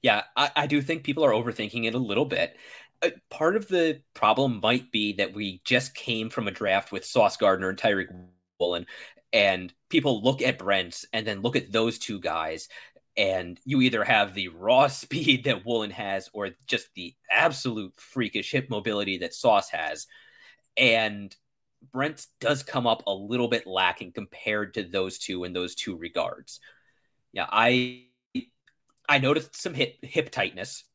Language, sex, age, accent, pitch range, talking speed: English, male, 20-39, American, 100-135 Hz, 170 wpm